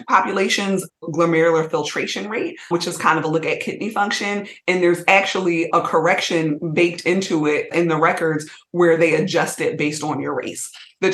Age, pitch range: 30-49, 160-180 Hz